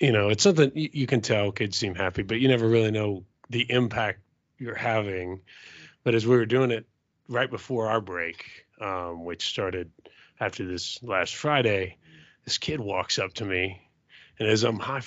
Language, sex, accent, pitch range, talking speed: English, male, American, 95-125 Hz, 185 wpm